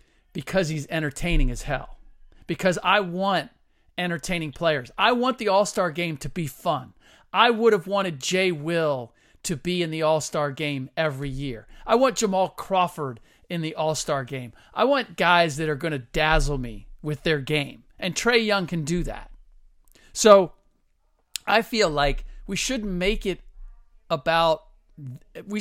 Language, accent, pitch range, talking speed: English, American, 155-210 Hz, 165 wpm